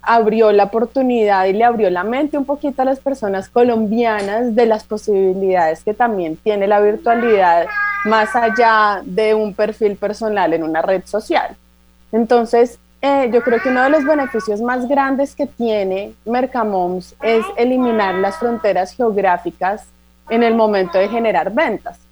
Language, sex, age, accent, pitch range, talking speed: Spanish, female, 30-49, Colombian, 200-245 Hz, 155 wpm